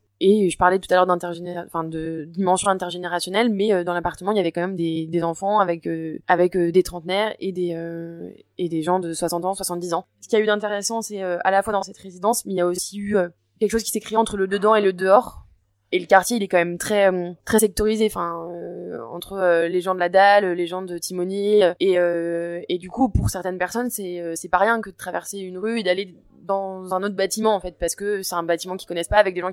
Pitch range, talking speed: 170-195 Hz, 245 wpm